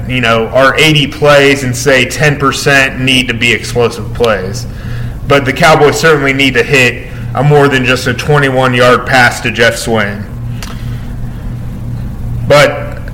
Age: 30-49